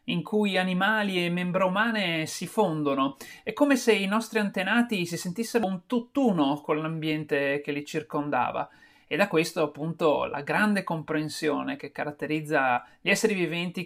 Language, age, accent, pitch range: Italian, 30-49, native, 145-185 Hz